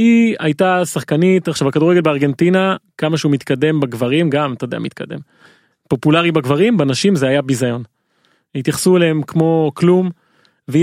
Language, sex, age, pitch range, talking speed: Hebrew, male, 30-49, 140-175 Hz, 140 wpm